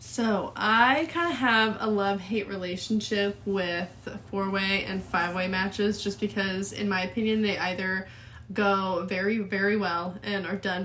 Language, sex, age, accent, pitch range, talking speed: English, female, 20-39, American, 185-215 Hz, 150 wpm